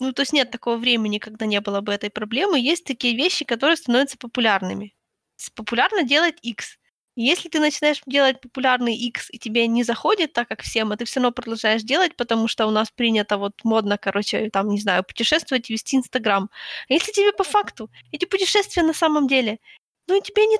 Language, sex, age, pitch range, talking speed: Ukrainian, female, 20-39, 230-310 Hz, 195 wpm